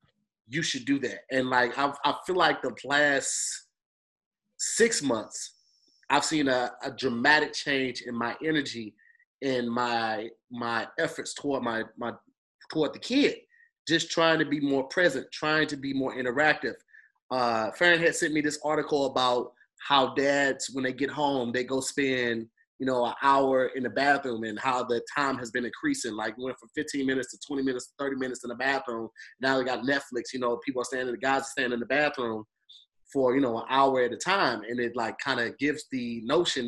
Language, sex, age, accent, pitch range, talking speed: English, male, 30-49, American, 120-150 Hz, 200 wpm